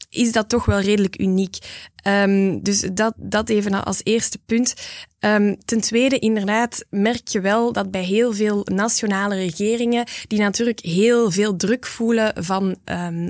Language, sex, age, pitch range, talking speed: Dutch, female, 10-29, 190-225 Hz, 160 wpm